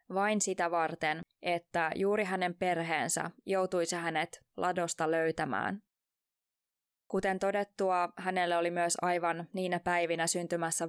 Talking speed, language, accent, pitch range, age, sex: 110 wpm, Finnish, native, 170-195 Hz, 20-39, female